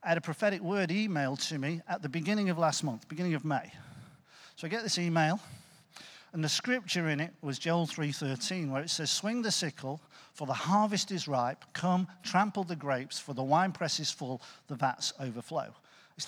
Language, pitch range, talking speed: English, 145-185 Hz, 200 wpm